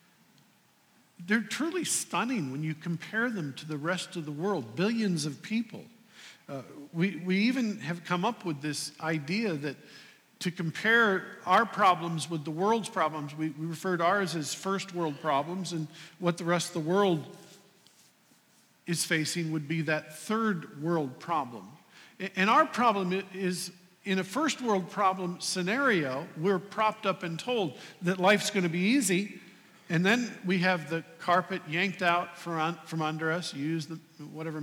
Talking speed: 165 wpm